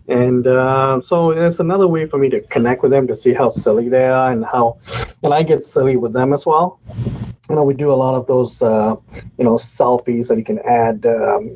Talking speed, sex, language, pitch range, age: 235 wpm, male, English, 115-155 Hz, 30-49